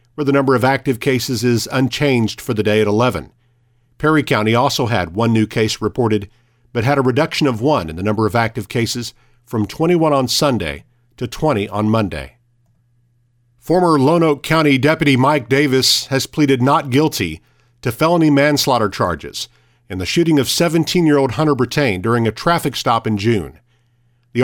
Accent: American